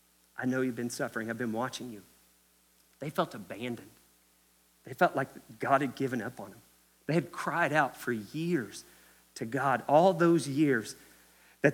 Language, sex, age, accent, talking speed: English, male, 40-59, American, 170 wpm